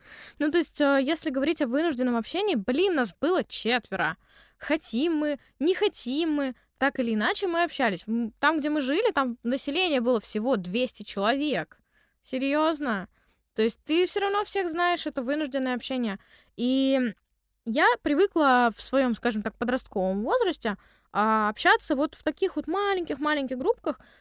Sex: female